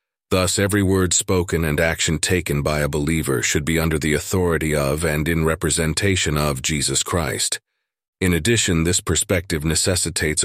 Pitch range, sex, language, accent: 75-90 Hz, male, English, American